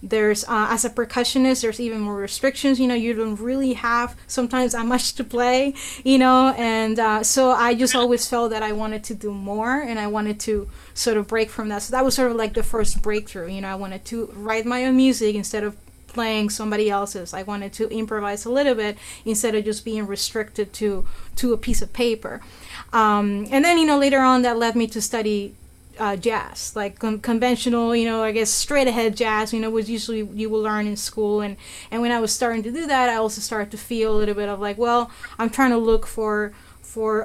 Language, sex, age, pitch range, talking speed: English, female, 30-49, 210-240 Hz, 230 wpm